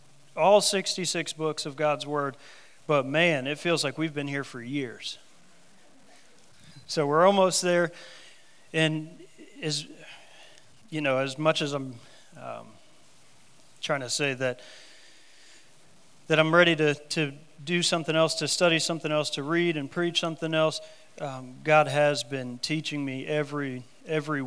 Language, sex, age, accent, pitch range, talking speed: English, male, 40-59, American, 140-160 Hz, 145 wpm